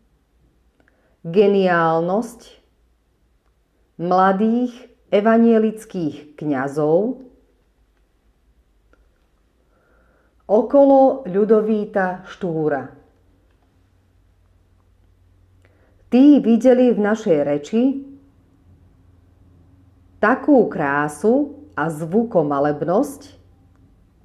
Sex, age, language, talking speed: female, 40-59, Slovak, 40 wpm